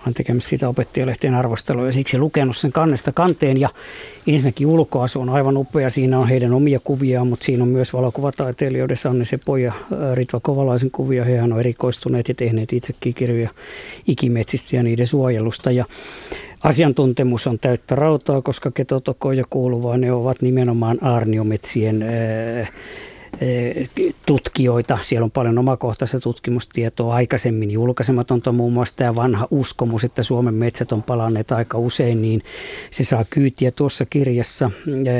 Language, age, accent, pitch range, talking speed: Finnish, 50-69, native, 120-135 Hz, 140 wpm